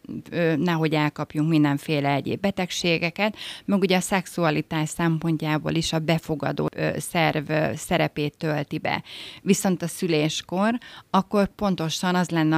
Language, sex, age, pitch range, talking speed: Hungarian, female, 30-49, 155-180 Hz, 115 wpm